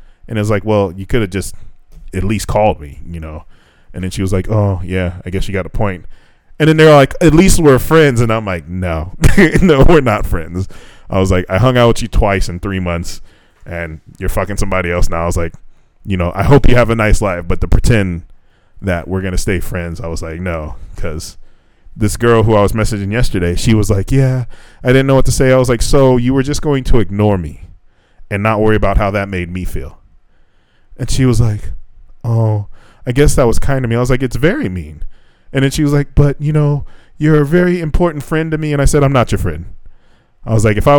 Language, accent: English, American